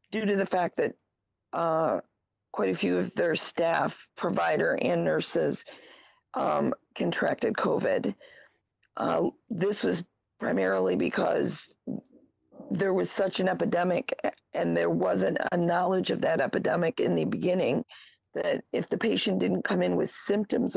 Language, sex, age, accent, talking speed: English, female, 40-59, American, 140 wpm